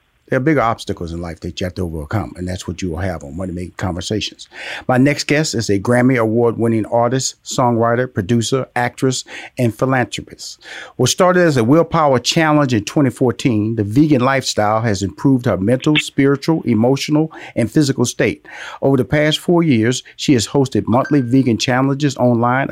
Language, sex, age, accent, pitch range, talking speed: English, male, 40-59, American, 115-145 Hz, 175 wpm